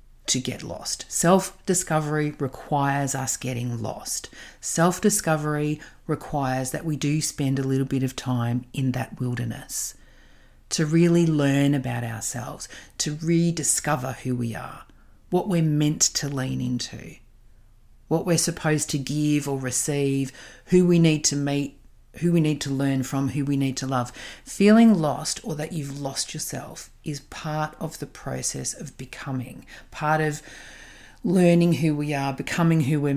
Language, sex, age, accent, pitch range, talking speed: English, female, 40-59, Australian, 130-160 Hz, 150 wpm